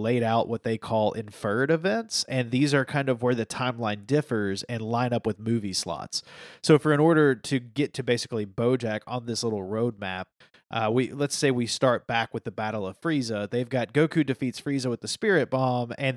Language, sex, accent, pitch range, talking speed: English, male, American, 115-145 Hz, 215 wpm